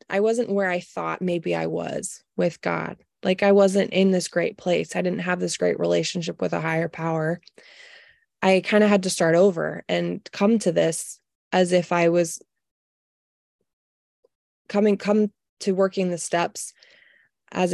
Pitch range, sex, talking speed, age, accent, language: 175-205 Hz, female, 165 wpm, 20-39, American, English